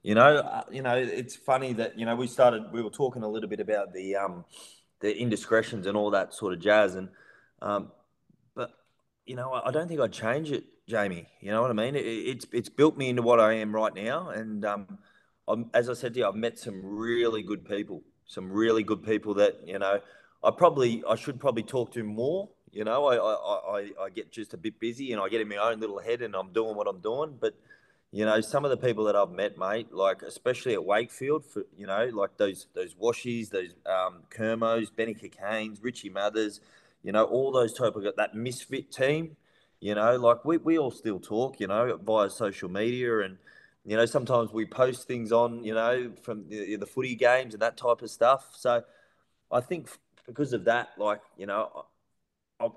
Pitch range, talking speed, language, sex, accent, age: 110-130 Hz, 220 wpm, English, male, Australian, 20-39